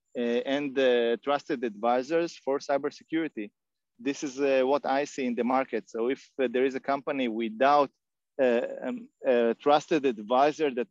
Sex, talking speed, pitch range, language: male, 165 wpm, 120-140 Hz, English